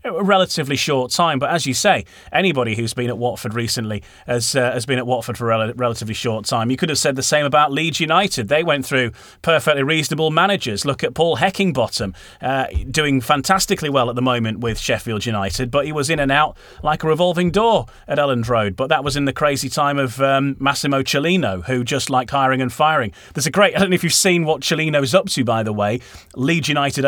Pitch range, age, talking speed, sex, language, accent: 125-170 Hz, 30-49, 225 wpm, male, English, British